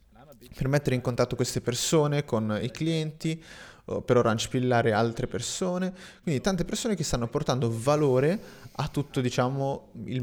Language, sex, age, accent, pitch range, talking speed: Italian, male, 30-49, native, 120-160 Hz, 140 wpm